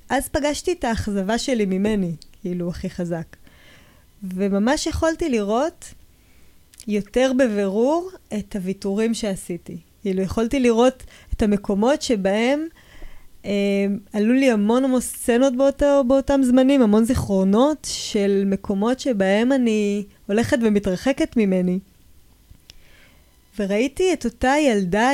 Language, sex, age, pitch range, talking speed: Hebrew, female, 20-39, 200-270 Hz, 105 wpm